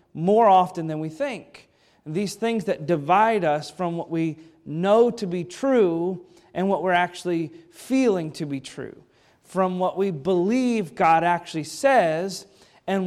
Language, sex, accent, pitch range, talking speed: English, male, American, 160-195 Hz, 150 wpm